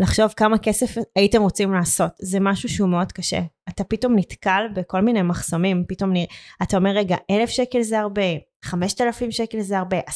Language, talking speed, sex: Hebrew, 185 wpm, female